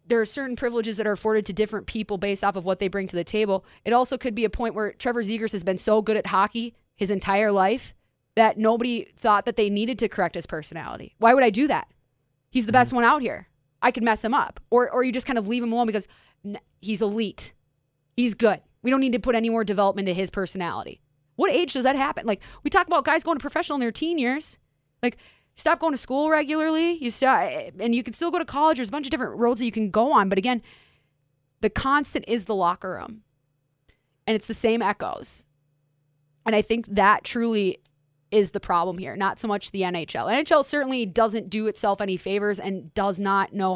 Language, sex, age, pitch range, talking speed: English, female, 20-39, 190-245 Hz, 230 wpm